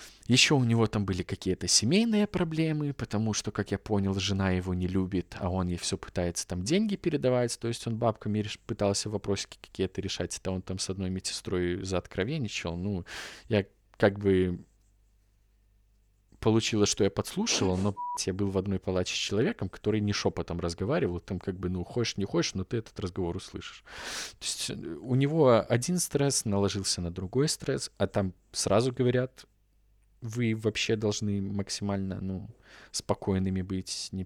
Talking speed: 170 wpm